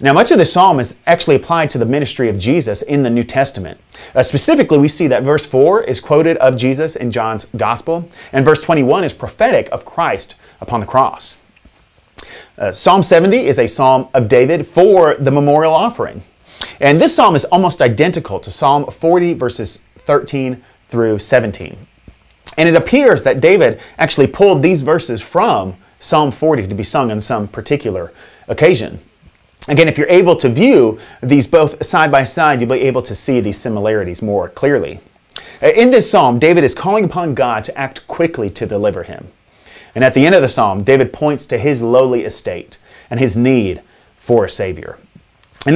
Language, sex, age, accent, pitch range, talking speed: English, male, 30-49, American, 120-160 Hz, 180 wpm